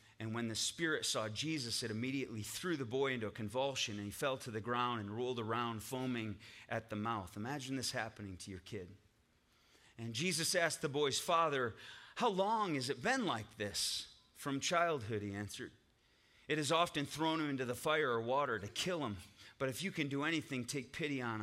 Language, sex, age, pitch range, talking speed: English, male, 30-49, 110-145 Hz, 200 wpm